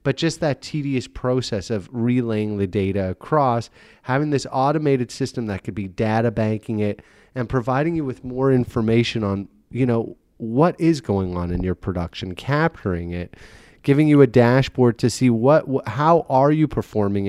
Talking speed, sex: 175 wpm, male